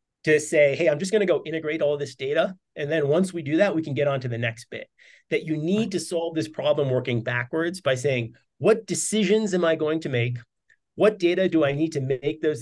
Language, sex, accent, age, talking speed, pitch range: English, male, American, 30-49, 245 wpm, 140-180 Hz